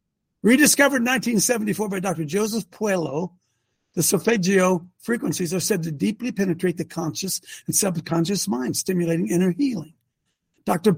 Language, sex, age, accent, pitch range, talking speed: English, male, 60-79, American, 180-260 Hz, 130 wpm